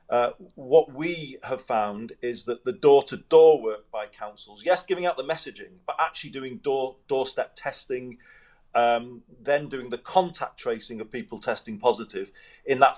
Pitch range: 115-160 Hz